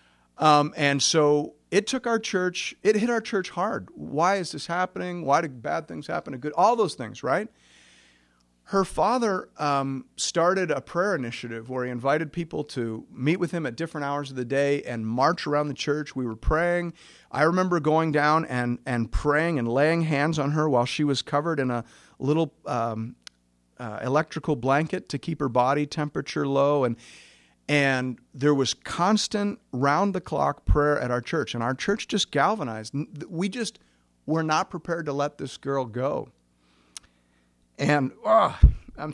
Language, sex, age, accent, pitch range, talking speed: English, male, 50-69, American, 120-170 Hz, 170 wpm